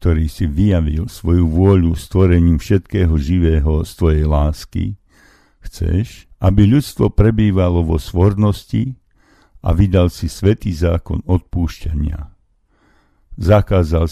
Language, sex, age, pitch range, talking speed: Slovak, male, 60-79, 80-95 Hz, 100 wpm